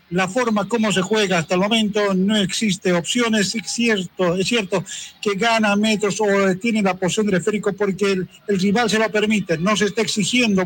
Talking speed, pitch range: 195 wpm, 180-210 Hz